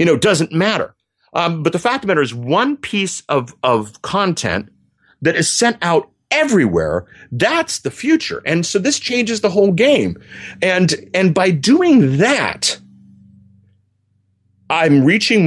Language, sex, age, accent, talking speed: English, male, 40-59, American, 145 wpm